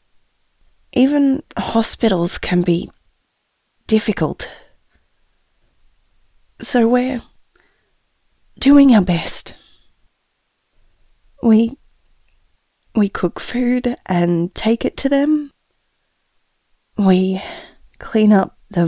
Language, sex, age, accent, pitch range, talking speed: English, female, 20-39, Australian, 170-225 Hz, 75 wpm